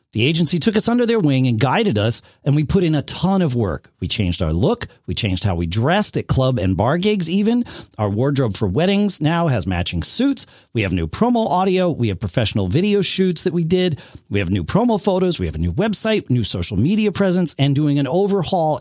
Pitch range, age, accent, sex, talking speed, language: 105-170 Hz, 40-59, American, male, 230 wpm, English